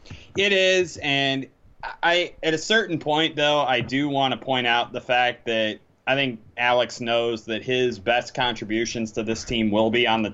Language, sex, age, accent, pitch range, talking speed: English, male, 20-39, American, 110-135 Hz, 190 wpm